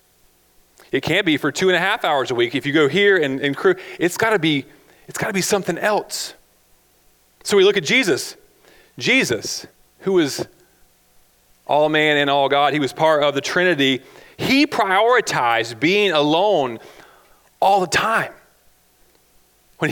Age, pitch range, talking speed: 30-49, 135-205 Hz, 155 wpm